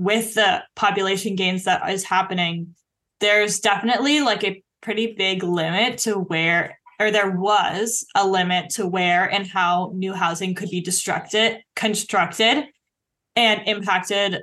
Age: 10-29